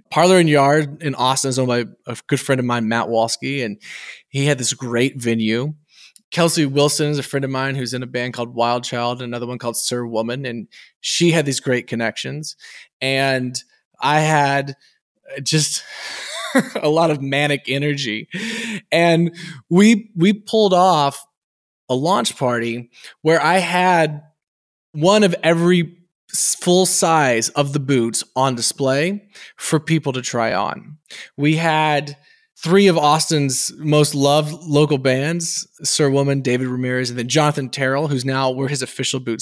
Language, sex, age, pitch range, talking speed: English, male, 20-39, 130-170 Hz, 160 wpm